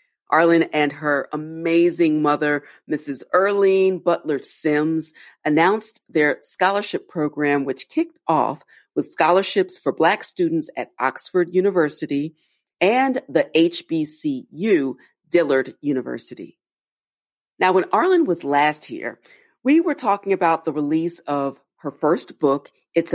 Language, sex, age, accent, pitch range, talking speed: English, female, 40-59, American, 150-205 Hz, 115 wpm